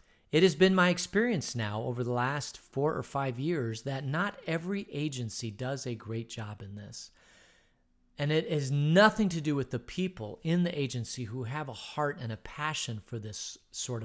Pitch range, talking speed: 115-150 Hz, 190 wpm